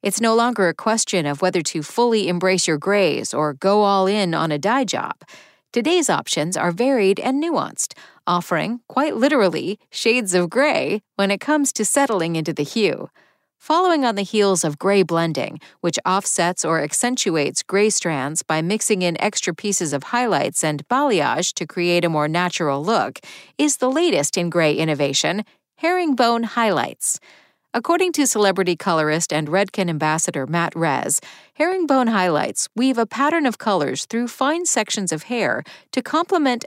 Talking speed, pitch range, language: 160 wpm, 175-255 Hz, English